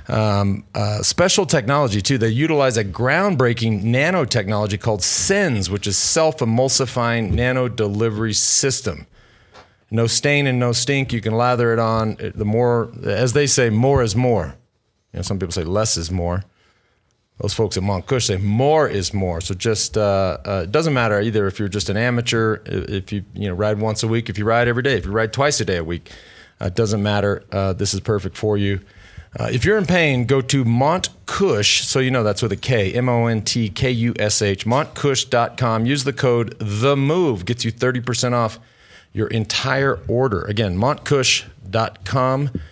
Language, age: English, 40-59